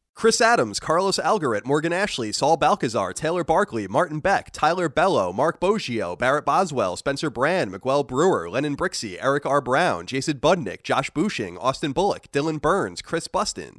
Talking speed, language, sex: 160 wpm, English, male